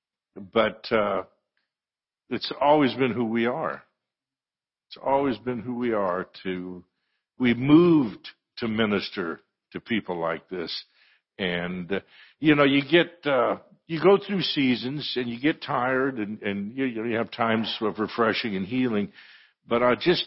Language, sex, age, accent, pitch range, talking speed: English, male, 60-79, American, 110-140 Hz, 160 wpm